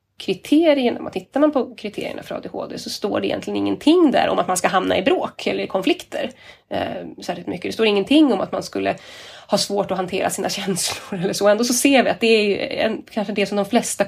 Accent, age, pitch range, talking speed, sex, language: native, 20-39, 195-240 Hz, 215 wpm, female, Swedish